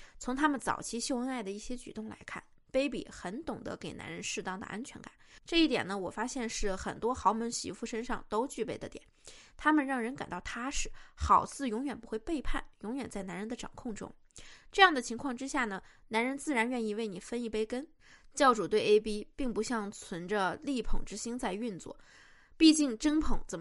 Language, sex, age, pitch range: Chinese, female, 20-39, 220-280 Hz